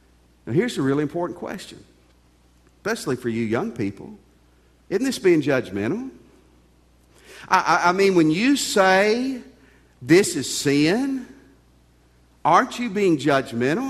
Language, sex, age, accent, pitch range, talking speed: English, male, 50-69, American, 110-175 Hz, 125 wpm